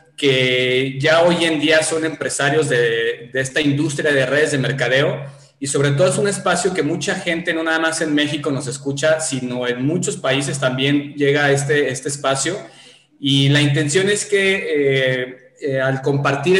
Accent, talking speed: Mexican, 180 wpm